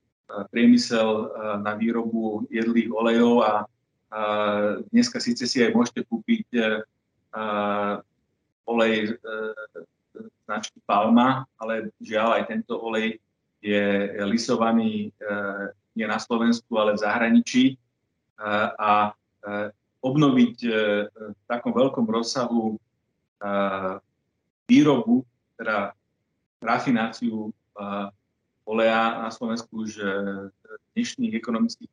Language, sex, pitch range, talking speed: Slovak, male, 105-130 Hz, 100 wpm